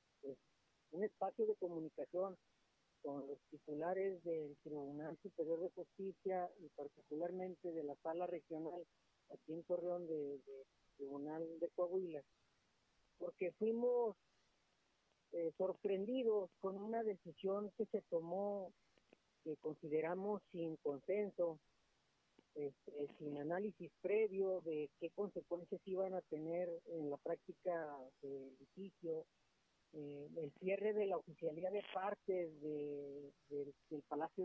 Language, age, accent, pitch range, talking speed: Spanish, 40-59, Mexican, 150-190 Hz, 110 wpm